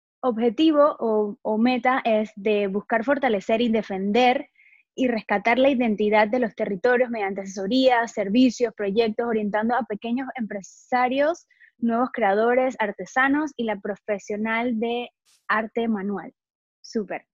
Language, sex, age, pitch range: Spanish, female, 20-39, 215-260 Hz